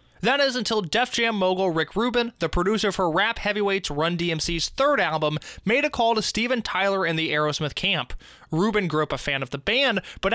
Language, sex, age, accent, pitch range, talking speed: English, male, 20-39, American, 160-230 Hz, 210 wpm